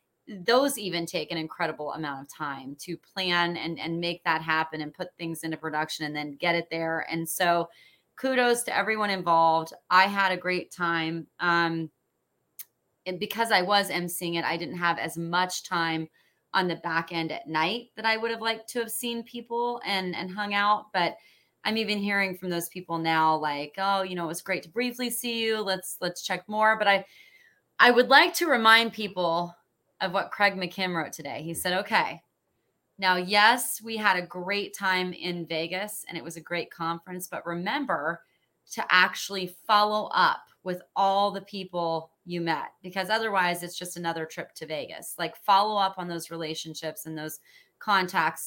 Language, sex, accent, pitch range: English, female, American, 165-200 Hz